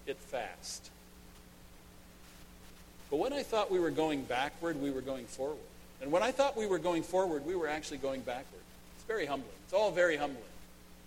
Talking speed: 185 wpm